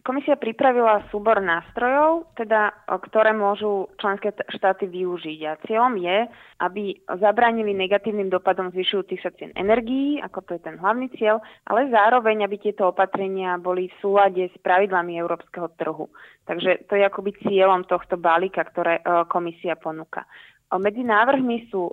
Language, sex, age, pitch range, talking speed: Slovak, female, 20-39, 185-215 Hz, 140 wpm